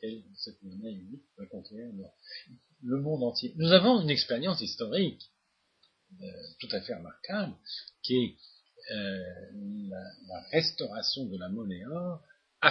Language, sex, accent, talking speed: French, male, French, 135 wpm